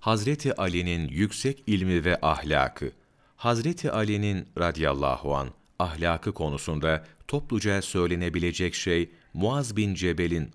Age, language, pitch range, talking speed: 40-59, Turkish, 80-105 Hz, 100 wpm